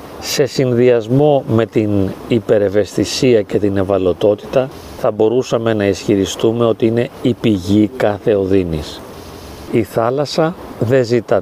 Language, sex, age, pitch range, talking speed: Greek, male, 40-59, 100-125 Hz, 115 wpm